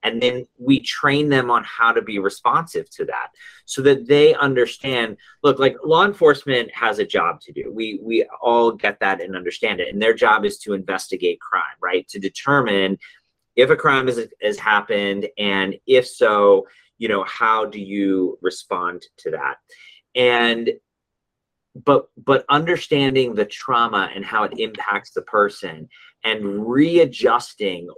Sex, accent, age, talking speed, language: male, American, 30-49, 155 wpm, English